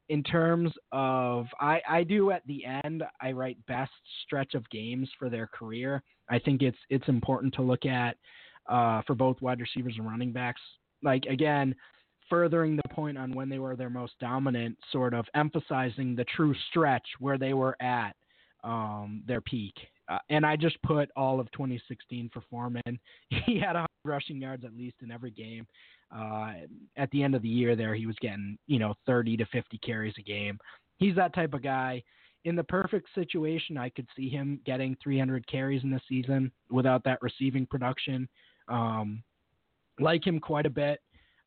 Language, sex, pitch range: English, male, 120-145 Hz